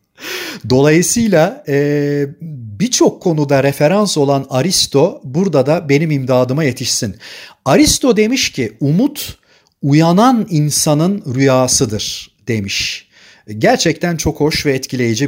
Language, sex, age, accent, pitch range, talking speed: Turkish, male, 40-59, native, 130-165 Hz, 95 wpm